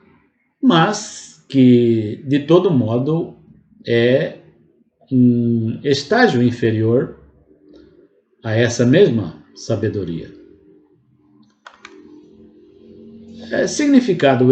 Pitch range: 115-150 Hz